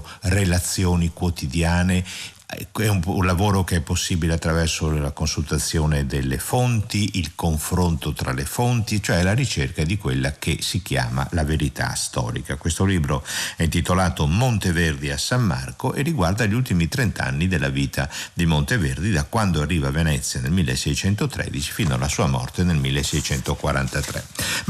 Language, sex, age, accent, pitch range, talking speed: Italian, male, 60-79, native, 75-105 Hz, 145 wpm